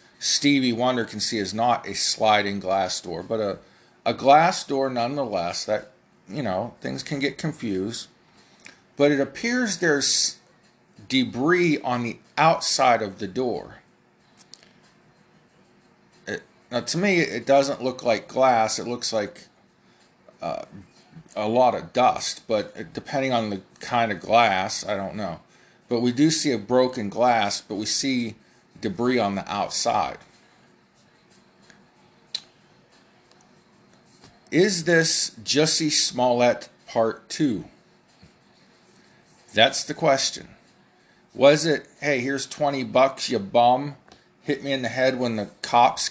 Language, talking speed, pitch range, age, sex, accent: English, 130 wpm, 115-145 Hz, 40-59, male, American